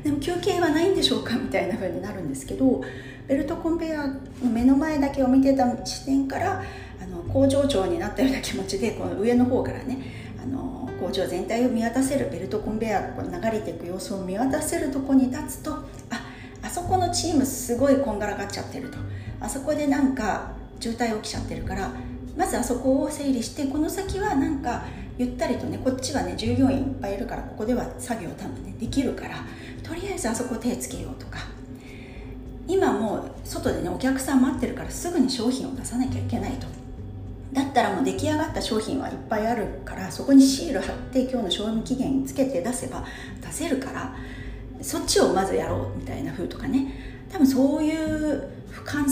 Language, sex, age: Japanese, female, 40-59